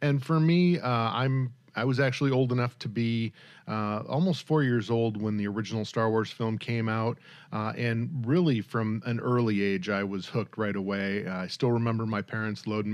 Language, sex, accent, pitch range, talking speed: English, male, American, 105-125 Hz, 205 wpm